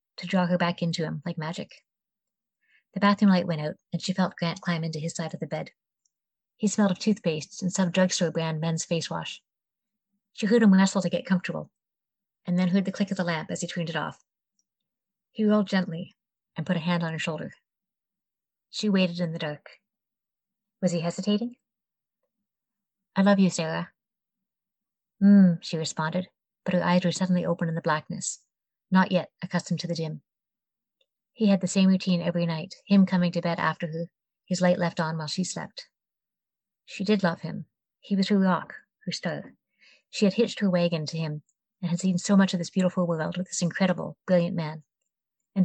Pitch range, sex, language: 170-195 Hz, female, English